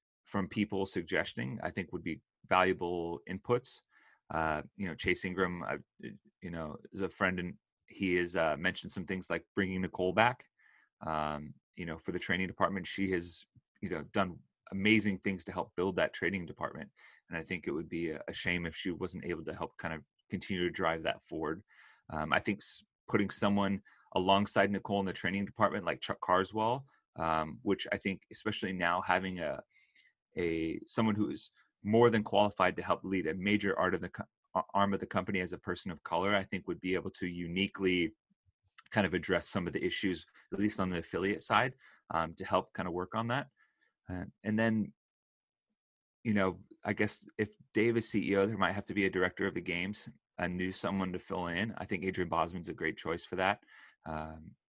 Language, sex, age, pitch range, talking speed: English, male, 30-49, 90-100 Hz, 200 wpm